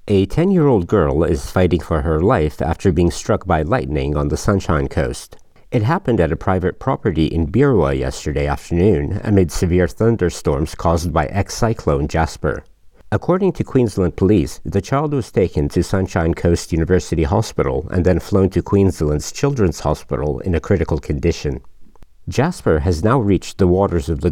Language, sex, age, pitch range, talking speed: English, male, 50-69, 80-100 Hz, 165 wpm